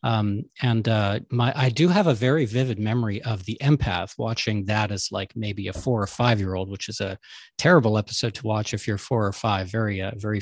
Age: 40-59